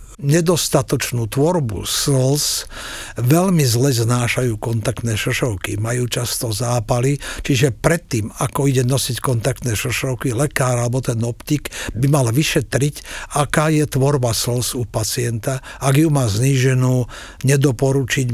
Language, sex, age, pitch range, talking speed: Slovak, male, 60-79, 120-150 Hz, 120 wpm